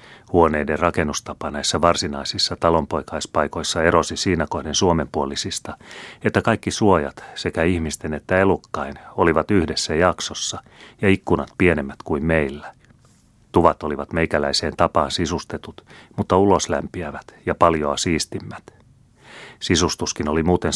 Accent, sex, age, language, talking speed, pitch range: native, male, 30-49, Finnish, 105 wpm, 75-90 Hz